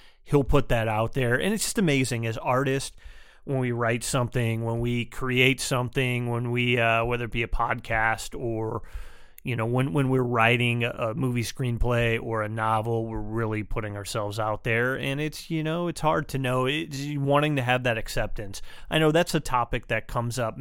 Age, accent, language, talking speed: 30-49, American, English, 200 wpm